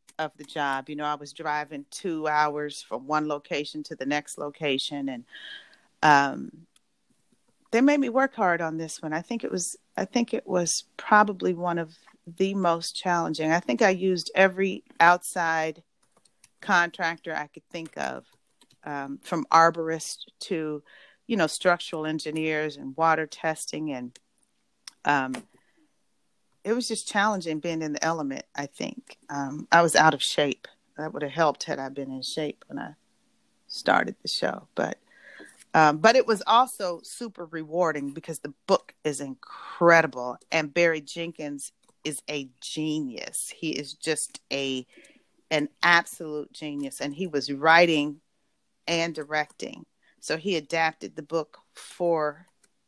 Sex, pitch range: female, 150-175 Hz